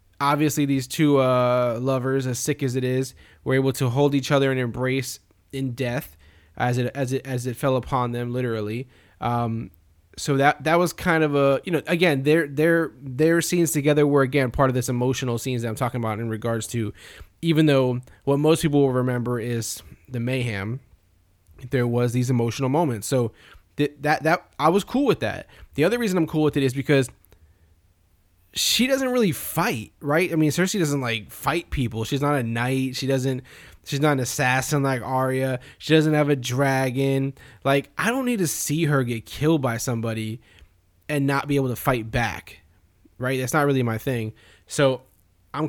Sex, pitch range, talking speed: male, 115-145 Hz, 195 wpm